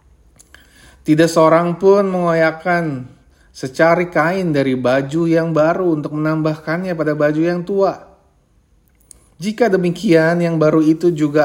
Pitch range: 120-165 Hz